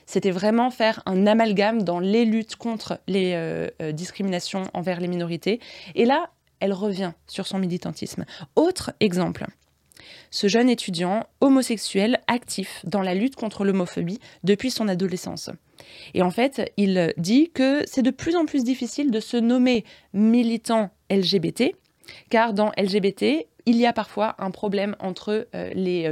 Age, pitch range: 20-39, 185-225 Hz